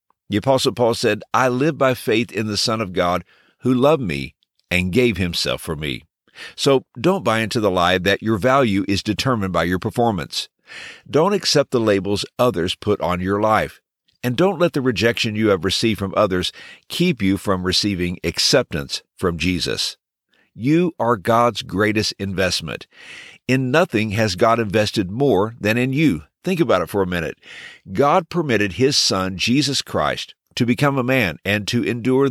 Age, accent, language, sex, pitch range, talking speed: 50-69, American, English, male, 95-135 Hz, 175 wpm